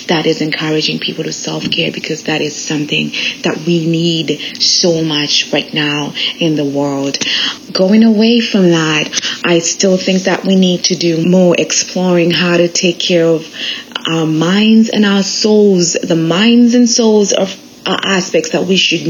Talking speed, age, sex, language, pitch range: 165 wpm, 30-49, female, English, 165-225 Hz